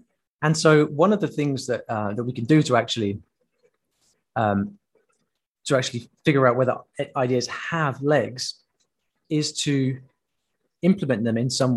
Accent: British